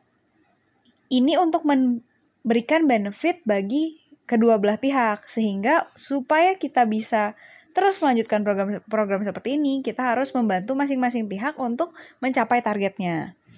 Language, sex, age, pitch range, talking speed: Indonesian, female, 10-29, 215-285 Hz, 110 wpm